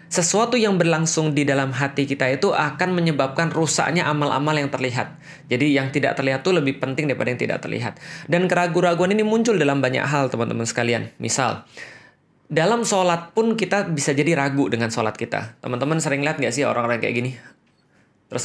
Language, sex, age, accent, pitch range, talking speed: Indonesian, male, 20-39, native, 140-180 Hz, 180 wpm